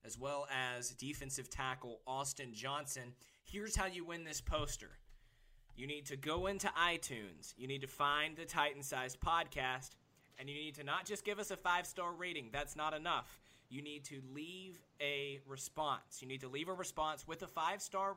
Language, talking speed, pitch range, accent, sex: English, 180 wpm, 130-155 Hz, American, male